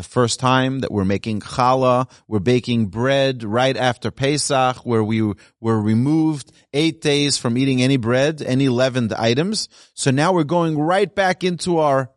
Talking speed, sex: 170 wpm, male